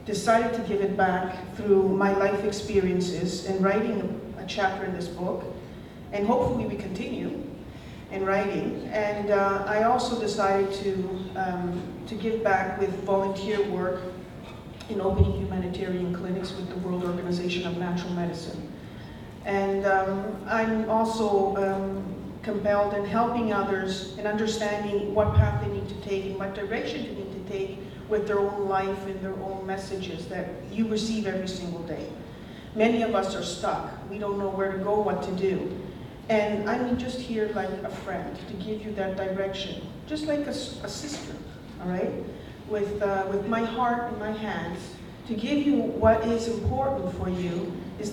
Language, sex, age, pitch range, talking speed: English, female, 40-59, 190-215 Hz, 165 wpm